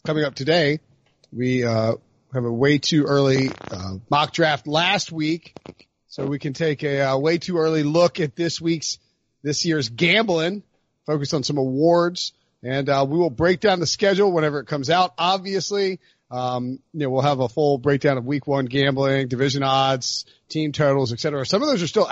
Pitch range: 130-170 Hz